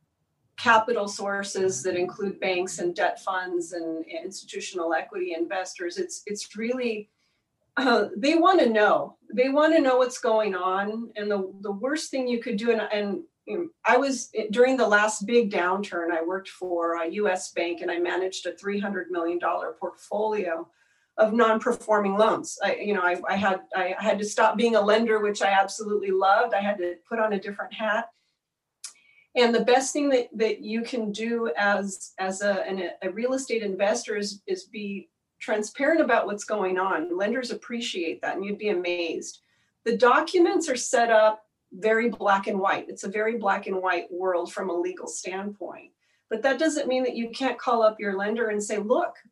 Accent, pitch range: American, 190-235 Hz